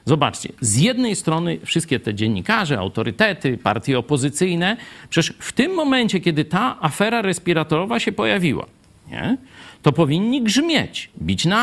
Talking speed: 130 wpm